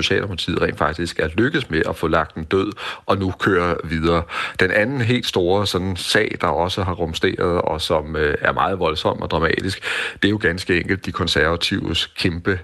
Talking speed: 185 wpm